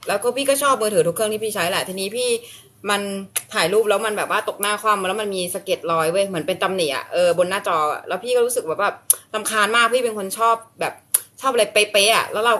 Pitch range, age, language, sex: 175-230 Hz, 20-39, Thai, female